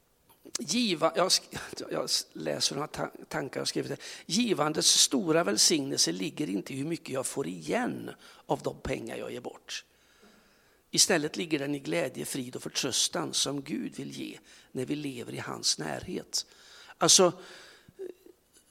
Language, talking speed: Swedish, 135 wpm